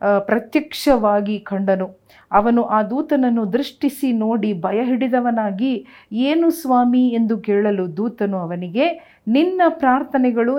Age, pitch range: 40-59, 200-245 Hz